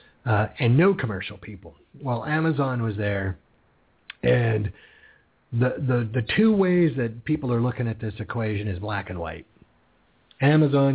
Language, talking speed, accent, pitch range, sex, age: English, 150 wpm, American, 105-145 Hz, male, 40-59